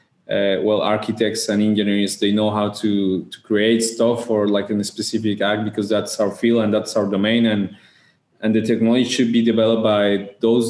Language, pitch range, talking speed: English, 105-115 Hz, 195 wpm